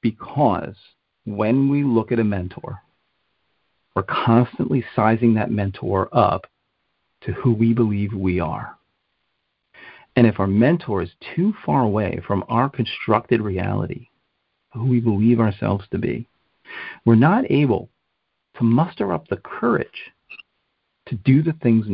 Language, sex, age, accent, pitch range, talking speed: English, male, 40-59, American, 105-140 Hz, 135 wpm